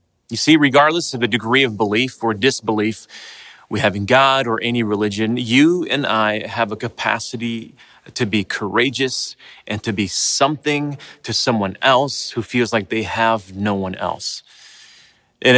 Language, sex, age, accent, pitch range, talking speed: English, male, 30-49, American, 105-140 Hz, 160 wpm